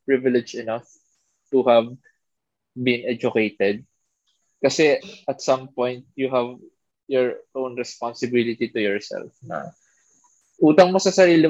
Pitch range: 115-140 Hz